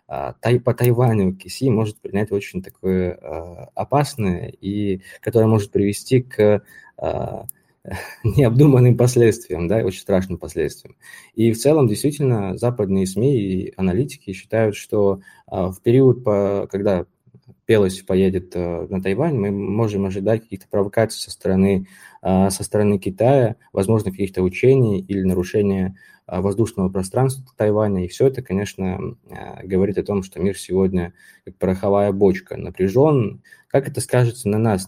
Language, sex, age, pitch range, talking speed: Russian, male, 20-39, 95-115 Hz, 135 wpm